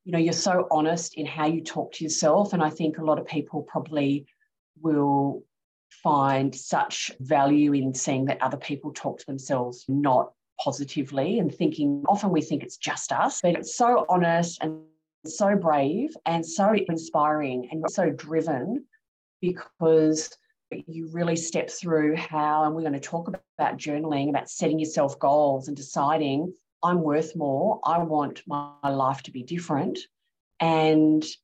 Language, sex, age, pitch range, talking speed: English, female, 30-49, 140-165 Hz, 160 wpm